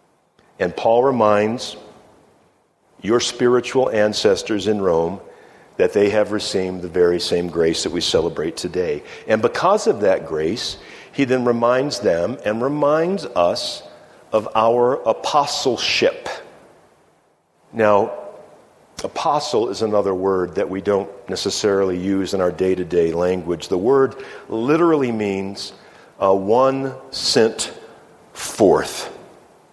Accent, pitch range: American, 100-140 Hz